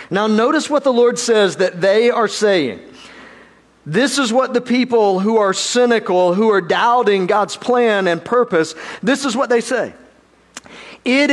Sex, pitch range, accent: male, 205-270 Hz, American